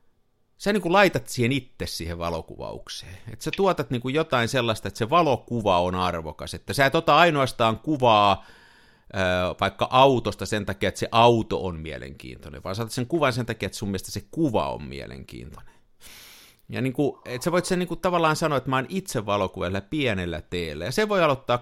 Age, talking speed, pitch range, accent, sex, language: 50-69, 185 wpm, 95-135 Hz, native, male, Finnish